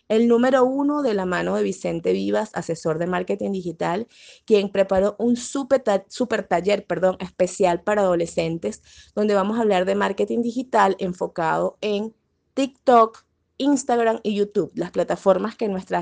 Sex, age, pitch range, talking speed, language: female, 20-39, 185-230 Hz, 155 wpm, Spanish